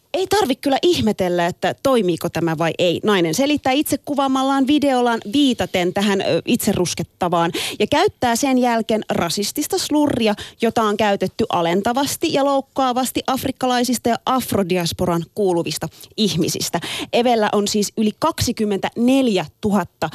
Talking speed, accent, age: 120 wpm, native, 30-49